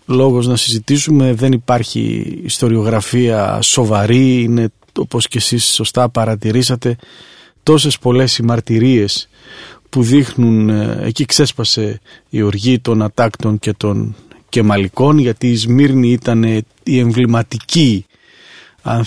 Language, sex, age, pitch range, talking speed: Greek, male, 40-59, 115-135 Hz, 105 wpm